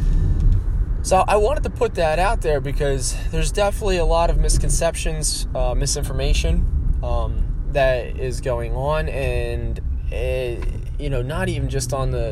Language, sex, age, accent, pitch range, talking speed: English, male, 20-39, American, 90-135 Hz, 150 wpm